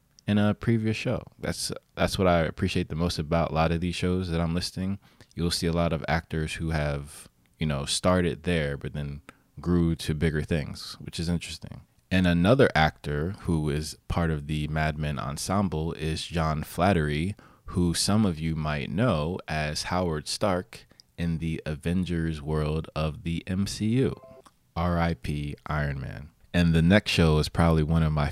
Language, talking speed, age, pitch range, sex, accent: English, 175 wpm, 20-39, 75-90 Hz, male, American